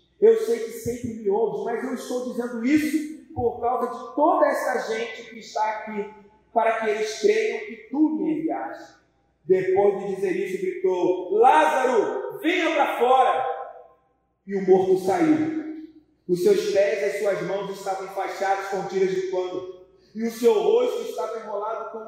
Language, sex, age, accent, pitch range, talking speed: Portuguese, male, 40-59, Brazilian, 210-335 Hz, 165 wpm